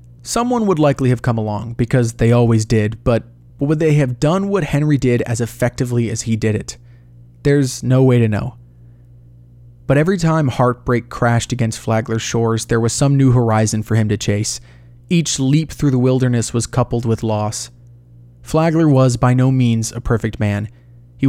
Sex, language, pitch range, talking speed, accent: male, English, 110-125 Hz, 180 wpm, American